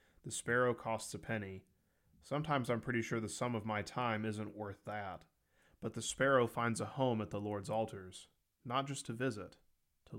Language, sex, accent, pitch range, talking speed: English, male, American, 105-130 Hz, 190 wpm